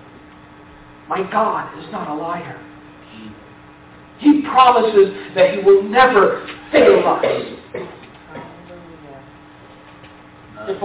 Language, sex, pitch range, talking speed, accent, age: English, male, 200-295 Hz, 85 wpm, American, 50-69